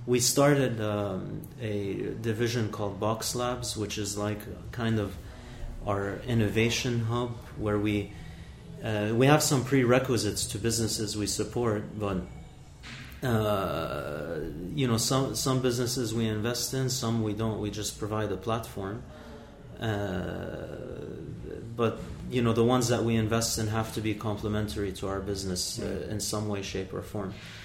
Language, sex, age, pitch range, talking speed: English, male, 30-49, 105-120 Hz, 150 wpm